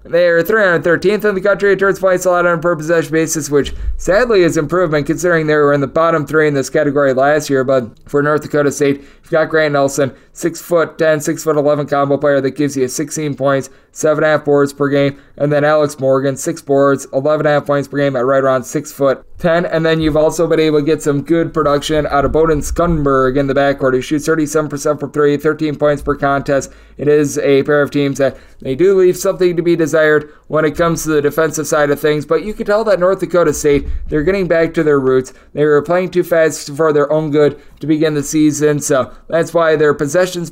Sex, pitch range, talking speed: male, 140-160 Hz, 245 wpm